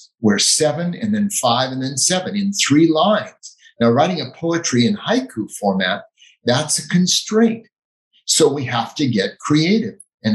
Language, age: English, 50-69